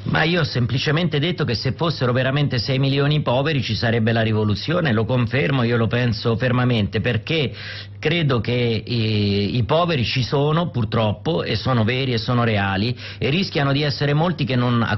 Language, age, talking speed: Italian, 40-59, 185 wpm